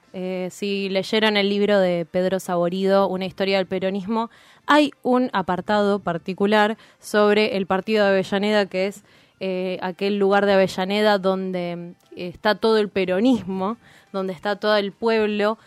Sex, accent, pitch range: female, Argentinian, 190-215 Hz